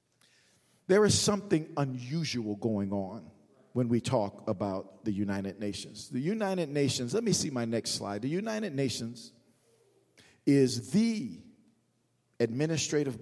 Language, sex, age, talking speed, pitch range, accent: English, male, 50-69, 125 wpm, 120-155 Hz, American